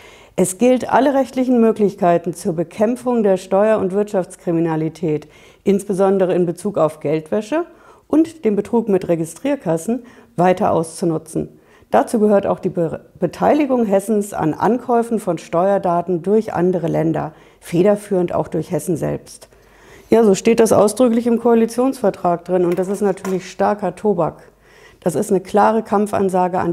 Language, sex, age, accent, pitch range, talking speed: German, female, 50-69, German, 175-220 Hz, 135 wpm